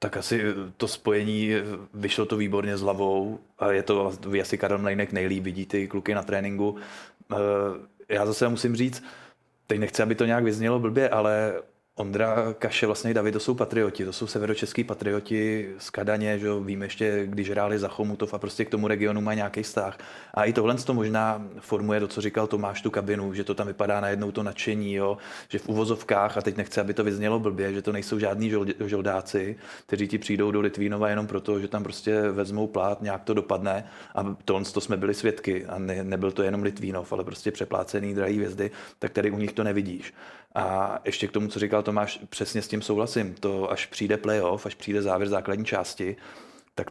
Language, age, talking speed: Czech, 20-39, 200 wpm